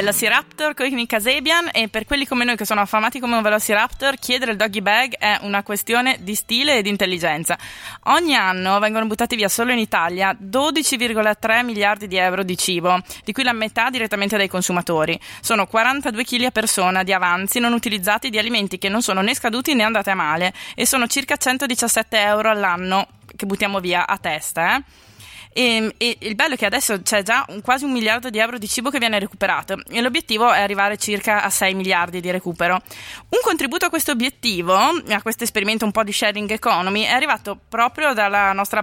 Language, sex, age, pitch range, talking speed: Italian, female, 20-39, 200-250 Hz, 195 wpm